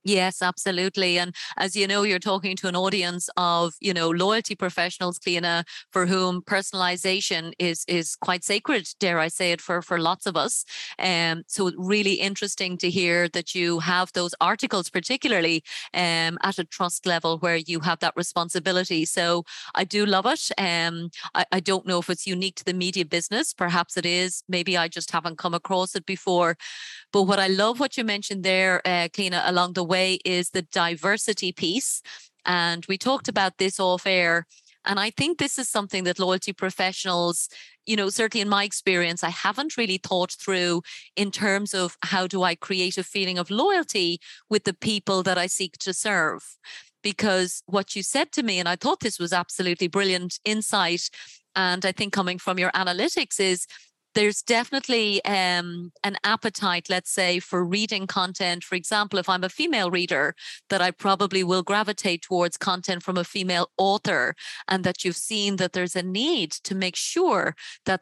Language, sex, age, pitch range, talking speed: English, female, 30-49, 175-200 Hz, 185 wpm